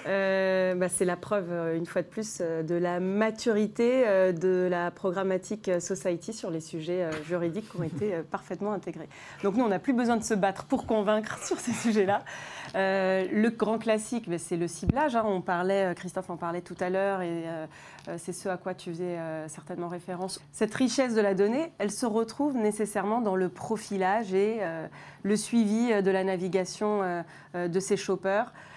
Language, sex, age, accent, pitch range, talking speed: French, female, 30-49, French, 175-215 Hz, 175 wpm